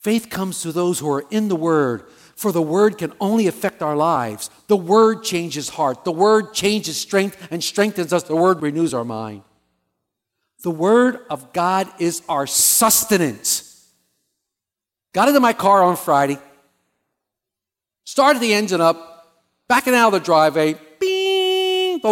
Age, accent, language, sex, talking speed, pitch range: 50-69, American, English, male, 150 wpm, 170-275 Hz